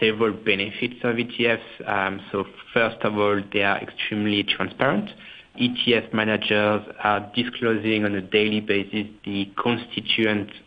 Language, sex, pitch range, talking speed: English, male, 100-115 Hz, 130 wpm